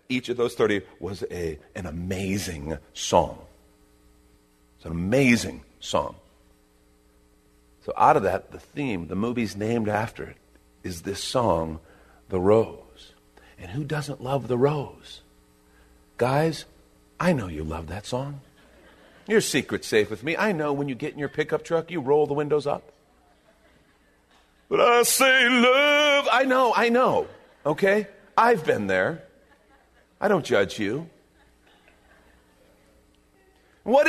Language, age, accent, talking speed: English, 50-69, American, 135 wpm